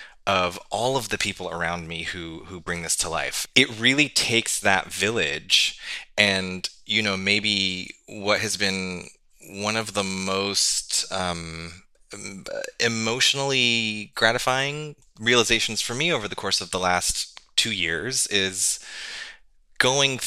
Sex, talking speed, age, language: male, 135 wpm, 20-39, English